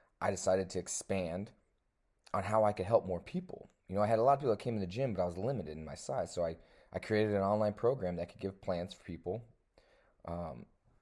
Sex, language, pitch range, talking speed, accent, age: male, English, 90-110 Hz, 245 wpm, American, 30-49